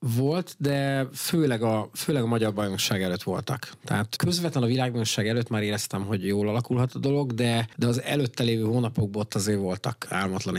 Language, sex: Hungarian, male